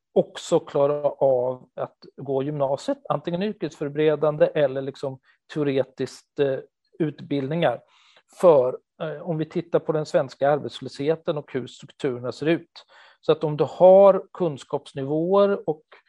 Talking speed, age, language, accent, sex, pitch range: 120 wpm, 40-59, Swedish, native, male, 135-160 Hz